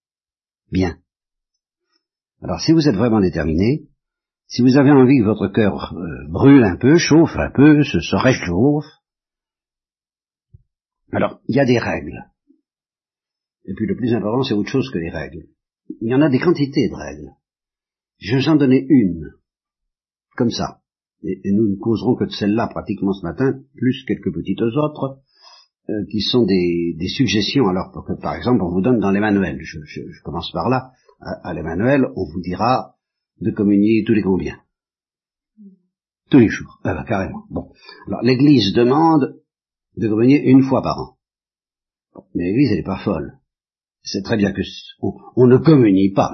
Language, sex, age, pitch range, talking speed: French, male, 60-79, 95-135 Hz, 170 wpm